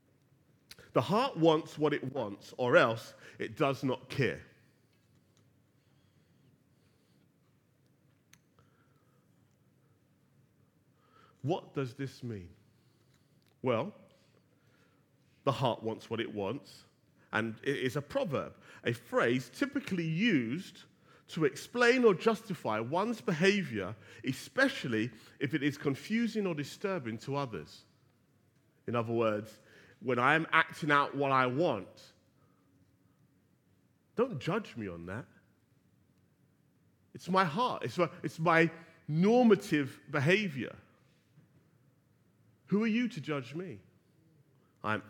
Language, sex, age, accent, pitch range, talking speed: English, male, 40-59, British, 125-160 Hz, 100 wpm